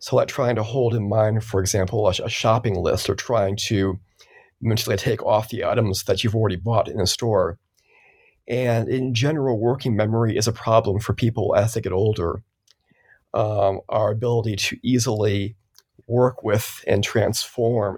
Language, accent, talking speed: English, American, 165 wpm